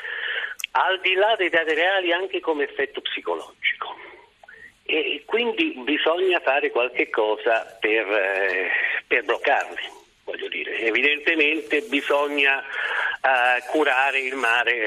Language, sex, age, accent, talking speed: Italian, male, 50-69, native, 115 wpm